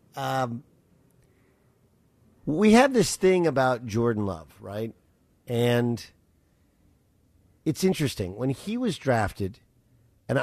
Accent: American